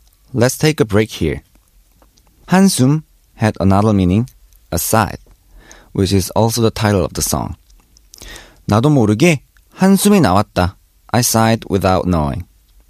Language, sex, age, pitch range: Korean, male, 40-59, 100-145 Hz